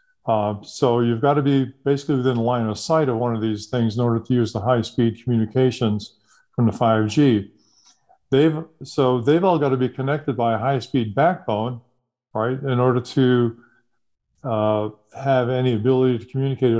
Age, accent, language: 50-69, American, English